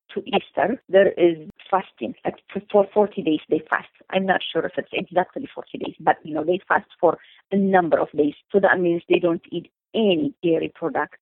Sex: female